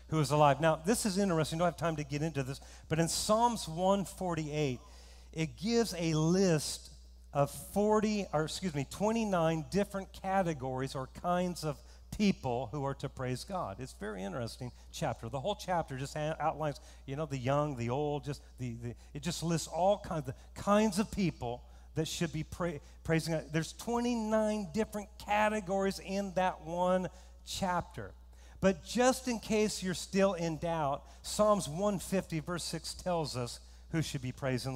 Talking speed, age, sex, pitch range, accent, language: 175 wpm, 40-59, male, 135-205 Hz, American, English